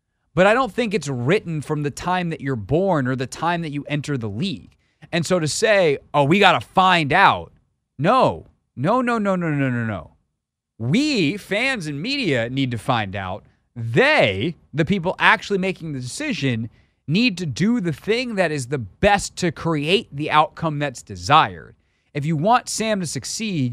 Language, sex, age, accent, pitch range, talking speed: English, male, 30-49, American, 130-180 Hz, 185 wpm